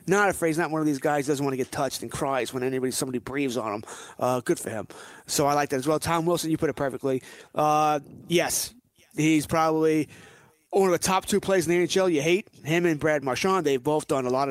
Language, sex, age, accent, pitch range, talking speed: English, male, 30-49, American, 140-175 Hz, 255 wpm